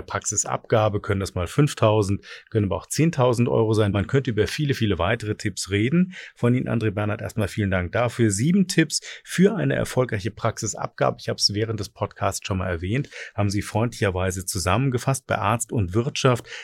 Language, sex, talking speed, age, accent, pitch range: German, male, 180 wpm, 40-59, German, 100-130 Hz